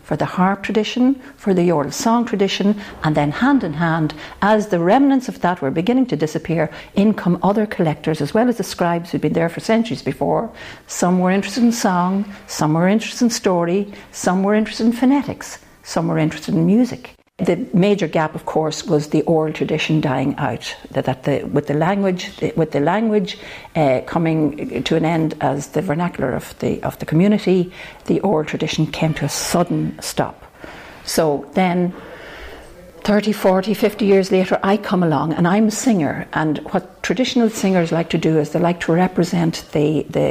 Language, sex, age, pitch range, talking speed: English, female, 60-79, 160-200 Hz, 190 wpm